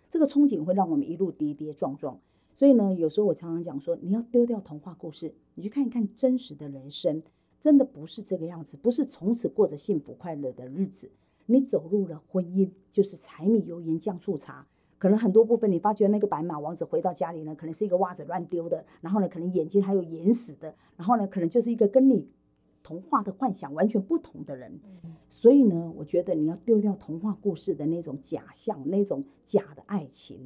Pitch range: 160-225 Hz